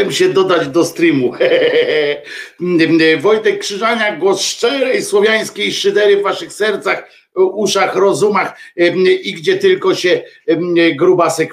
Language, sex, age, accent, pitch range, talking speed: Polish, male, 50-69, native, 160-230 Hz, 110 wpm